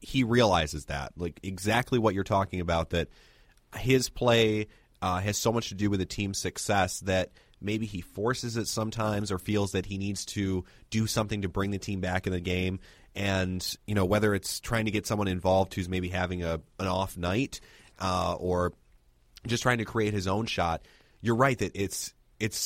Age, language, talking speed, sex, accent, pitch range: 30-49, English, 200 wpm, male, American, 90-110 Hz